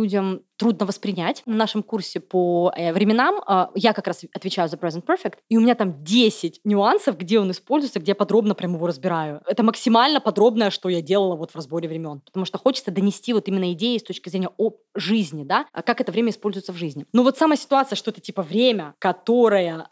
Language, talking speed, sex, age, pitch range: Russian, 205 wpm, female, 20-39, 190-255 Hz